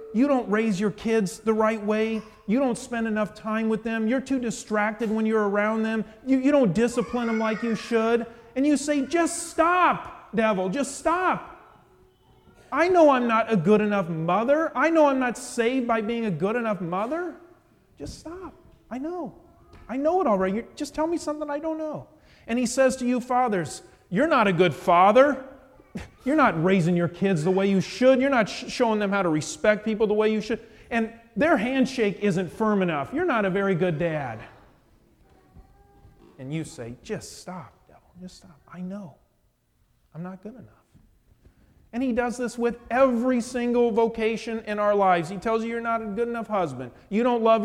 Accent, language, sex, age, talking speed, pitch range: American, English, male, 30-49, 195 wpm, 195-260 Hz